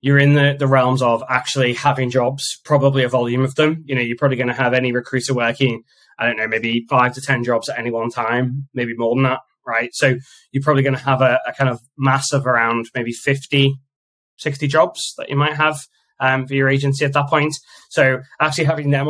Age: 10-29